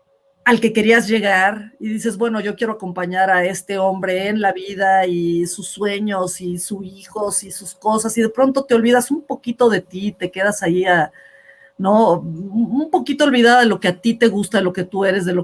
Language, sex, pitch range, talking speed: Spanish, female, 180-230 Hz, 215 wpm